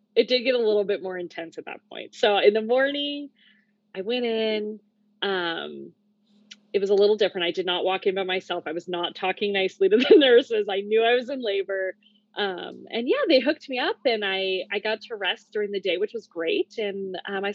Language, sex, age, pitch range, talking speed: English, female, 20-39, 185-220 Hz, 230 wpm